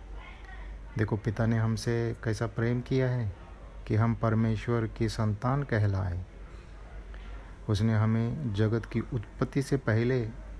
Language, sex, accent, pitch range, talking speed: Hindi, male, native, 95-120 Hz, 120 wpm